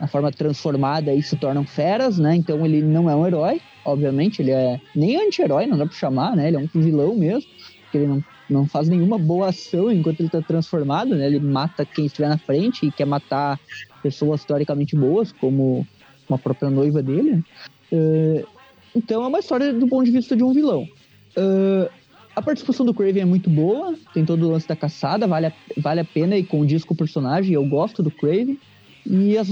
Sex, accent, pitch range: male, Brazilian, 145-195 Hz